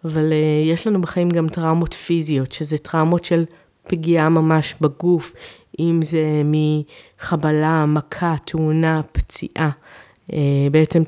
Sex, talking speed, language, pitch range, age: female, 110 wpm, Hebrew, 150-175 Hz, 30-49